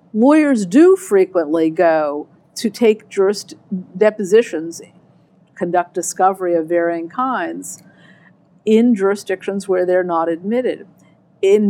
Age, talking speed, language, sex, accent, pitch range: 50-69, 105 wpm, English, female, American, 180-250 Hz